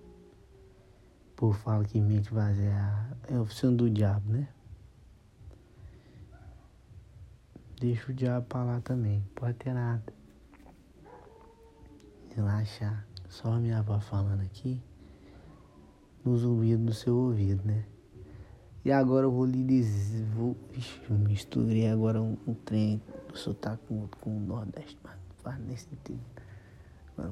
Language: Portuguese